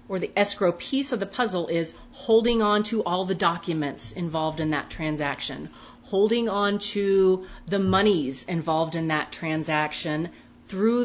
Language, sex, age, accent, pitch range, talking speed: English, female, 30-49, American, 165-205 Hz, 150 wpm